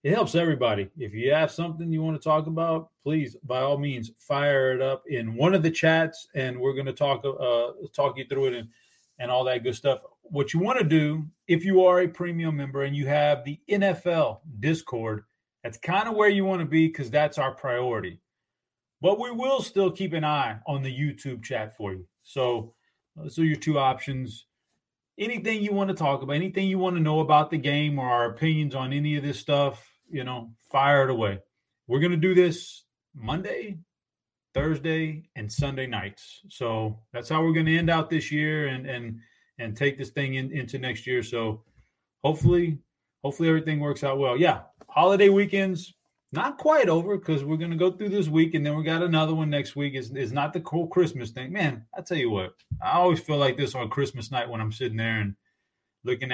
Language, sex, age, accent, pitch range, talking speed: English, male, 30-49, American, 125-165 Hz, 215 wpm